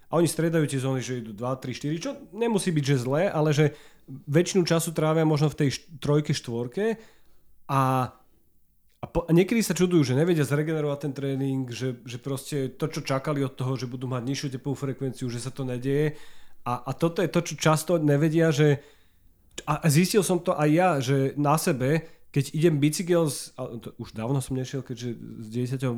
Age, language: 30-49, Slovak